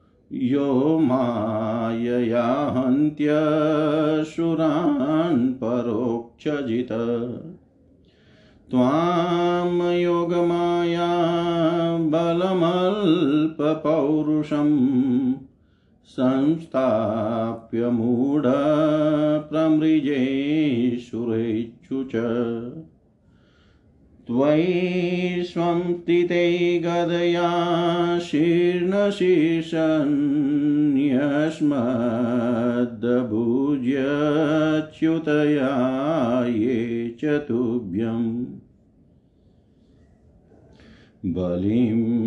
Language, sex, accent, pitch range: Hindi, male, native, 120-170 Hz